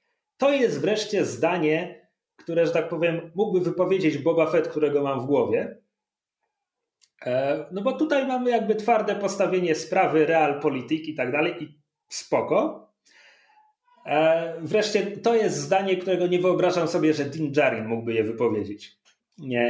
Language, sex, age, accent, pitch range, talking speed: Polish, male, 30-49, native, 150-215 Hz, 135 wpm